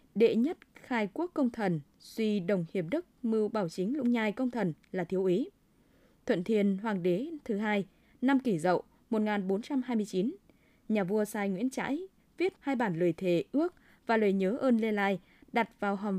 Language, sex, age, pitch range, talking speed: Vietnamese, female, 20-39, 195-260 Hz, 185 wpm